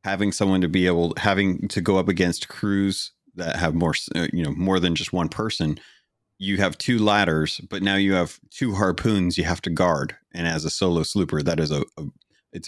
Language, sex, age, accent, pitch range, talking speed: English, male, 30-49, American, 80-95 Hz, 215 wpm